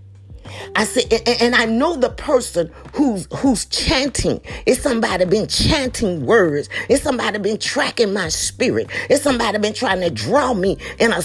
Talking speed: 165 wpm